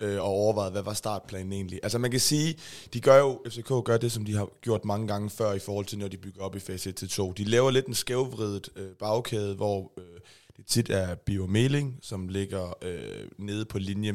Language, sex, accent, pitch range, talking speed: Danish, male, native, 100-115 Hz, 225 wpm